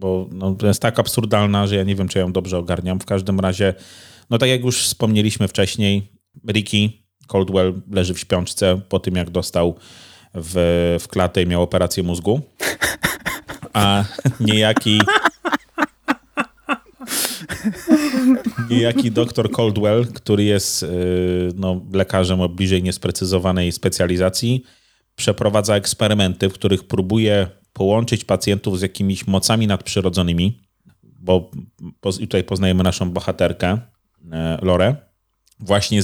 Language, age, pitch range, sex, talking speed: Polish, 30-49, 90-110 Hz, male, 120 wpm